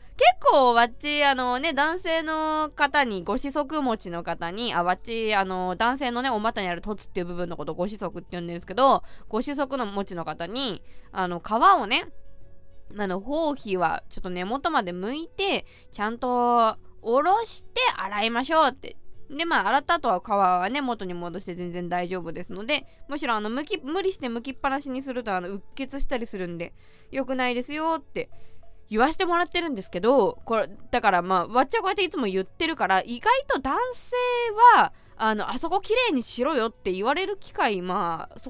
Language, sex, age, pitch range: Japanese, female, 20-39, 185-310 Hz